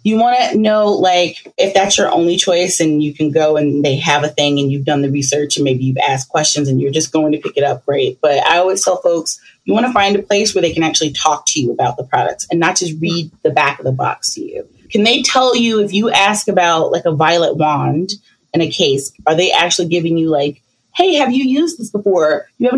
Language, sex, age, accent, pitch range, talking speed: English, female, 30-49, American, 155-215 Hz, 260 wpm